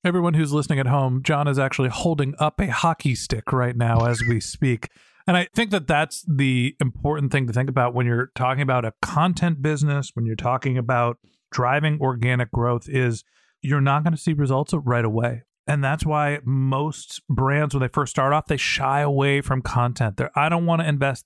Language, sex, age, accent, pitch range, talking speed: English, male, 40-59, American, 130-165 Hz, 205 wpm